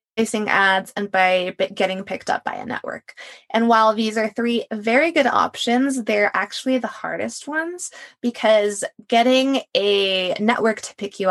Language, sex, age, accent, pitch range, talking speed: English, female, 20-39, American, 195-245 Hz, 160 wpm